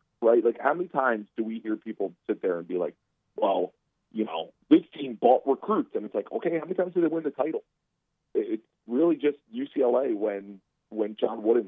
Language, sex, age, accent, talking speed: English, male, 40-59, American, 210 wpm